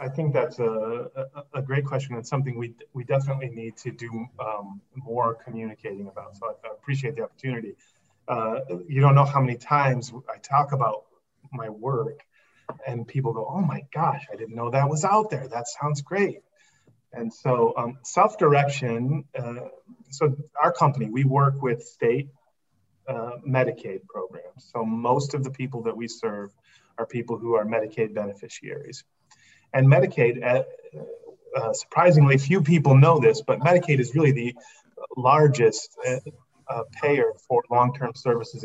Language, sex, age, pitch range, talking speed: English, male, 30-49, 115-150 Hz, 160 wpm